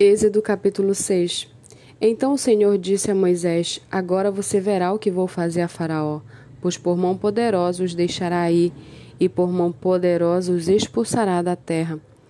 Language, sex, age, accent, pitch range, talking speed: Portuguese, female, 20-39, Brazilian, 170-200 Hz, 160 wpm